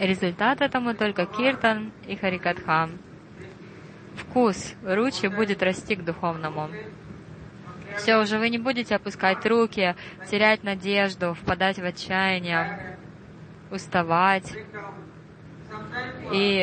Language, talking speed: Russian, 95 wpm